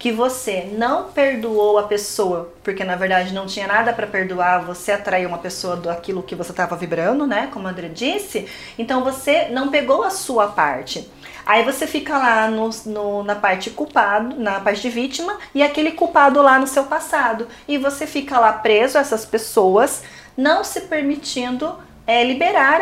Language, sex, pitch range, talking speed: Portuguese, female, 205-280 Hz, 180 wpm